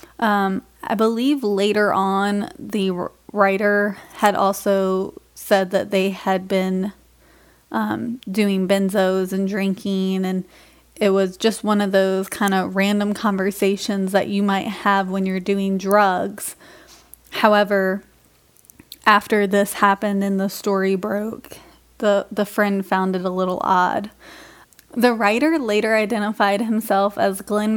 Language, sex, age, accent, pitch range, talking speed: English, female, 20-39, American, 195-215 Hz, 130 wpm